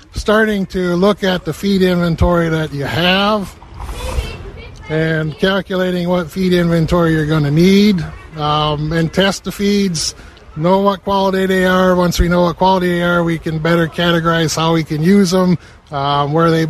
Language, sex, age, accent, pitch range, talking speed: English, male, 20-39, American, 150-180 Hz, 175 wpm